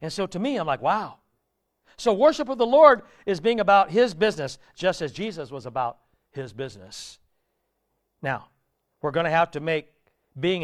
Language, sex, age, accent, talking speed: English, male, 60-79, American, 180 wpm